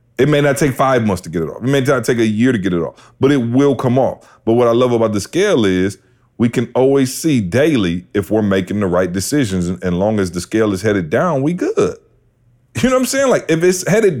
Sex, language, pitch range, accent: male, English, 110-165 Hz, American